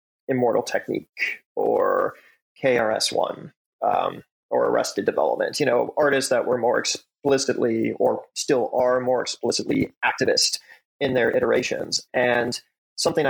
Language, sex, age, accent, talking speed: English, male, 30-49, American, 115 wpm